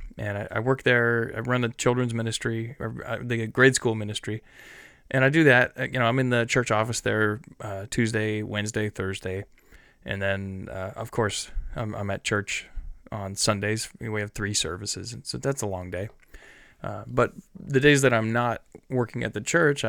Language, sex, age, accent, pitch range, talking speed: English, male, 20-39, American, 100-120 Hz, 185 wpm